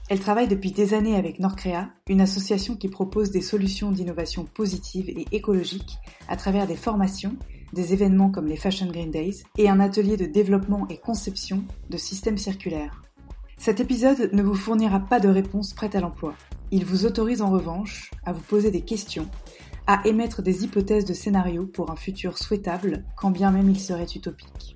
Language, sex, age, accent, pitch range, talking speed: French, female, 20-39, French, 180-205 Hz, 180 wpm